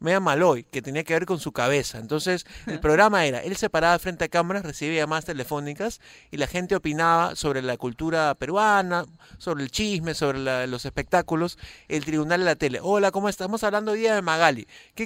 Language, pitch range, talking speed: Spanish, 145-180 Hz, 210 wpm